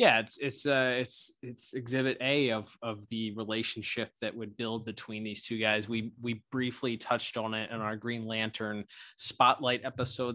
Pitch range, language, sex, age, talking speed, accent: 105-120 Hz, English, male, 20-39, 180 wpm, American